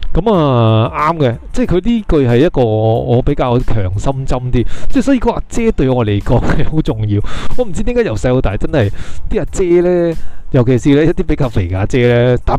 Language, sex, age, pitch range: Chinese, male, 20-39, 110-155 Hz